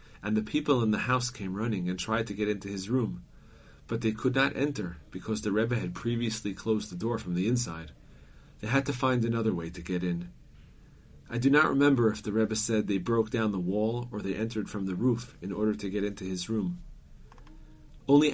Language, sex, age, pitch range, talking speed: English, male, 40-59, 95-115 Hz, 220 wpm